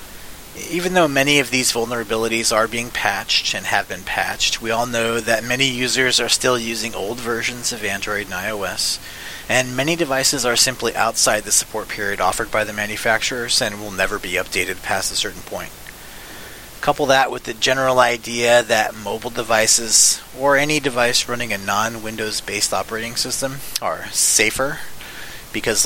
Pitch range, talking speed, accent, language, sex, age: 110-130 Hz, 165 wpm, American, English, male, 30-49